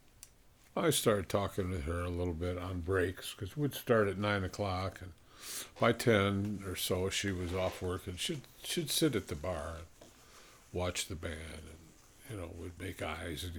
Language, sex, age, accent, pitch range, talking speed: English, male, 50-69, American, 90-105 Hz, 190 wpm